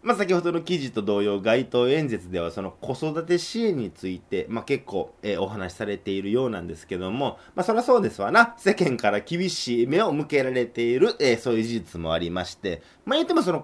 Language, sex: Japanese, male